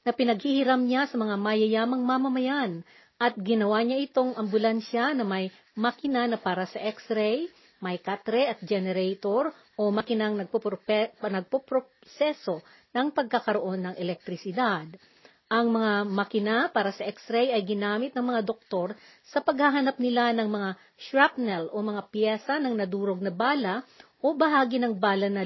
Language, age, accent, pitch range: Filipino, 40-59, native, 200-260 Hz